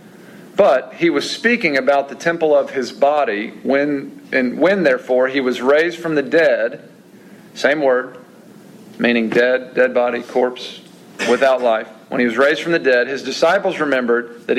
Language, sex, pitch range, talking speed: English, male, 130-165 Hz, 165 wpm